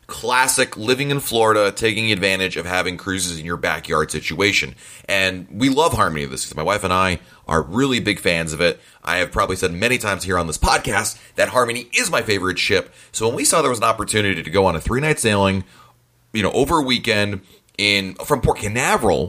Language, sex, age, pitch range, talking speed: English, male, 30-49, 90-110 Hz, 210 wpm